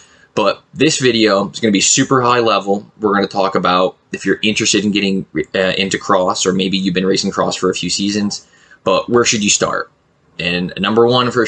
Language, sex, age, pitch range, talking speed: English, male, 20-39, 95-105 Hz, 220 wpm